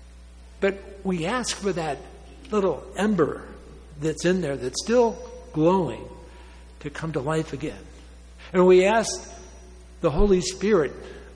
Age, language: 60-79, English